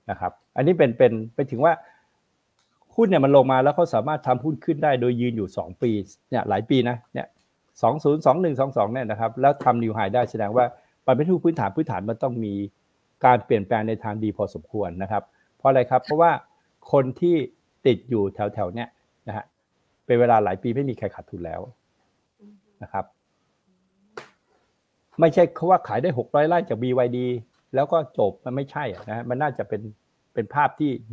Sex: male